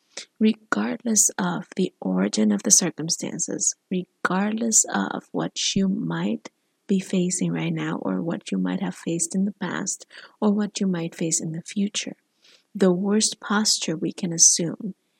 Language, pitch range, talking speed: English, 180-220 Hz, 155 wpm